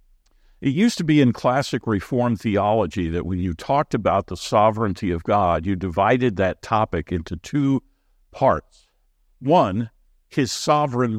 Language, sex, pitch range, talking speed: English, male, 95-145 Hz, 145 wpm